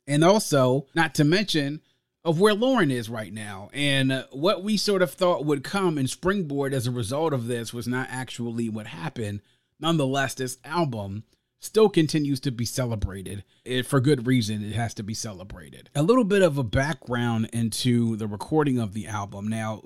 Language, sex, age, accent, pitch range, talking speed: English, male, 30-49, American, 125-155 Hz, 180 wpm